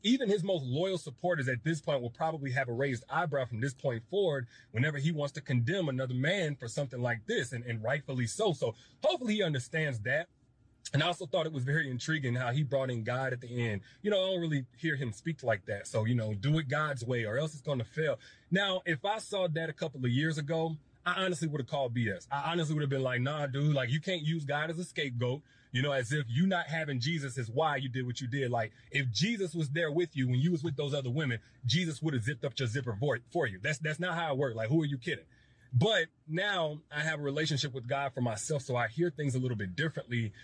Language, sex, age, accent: English, male, 30-49, American